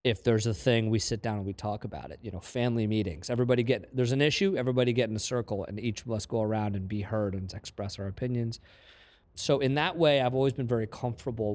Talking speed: 250 wpm